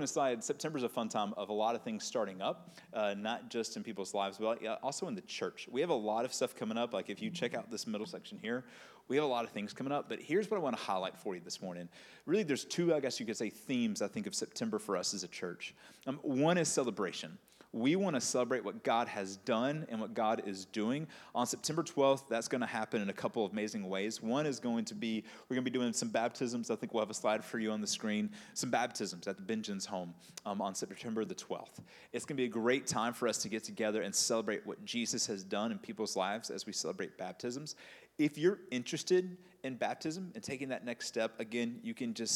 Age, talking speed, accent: 30-49, 255 wpm, American